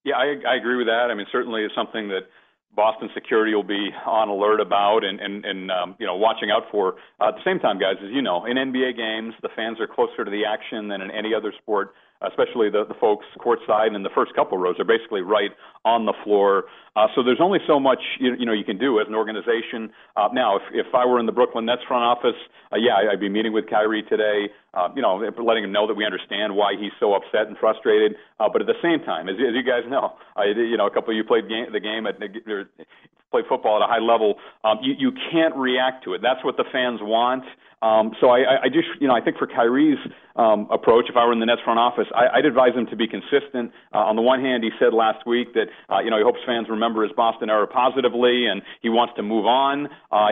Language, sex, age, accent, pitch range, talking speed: English, male, 40-59, American, 110-135 Hz, 255 wpm